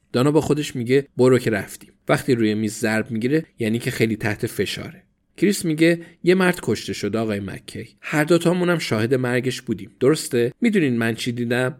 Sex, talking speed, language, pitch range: male, 185 wpm, Persian, 110-145 Hz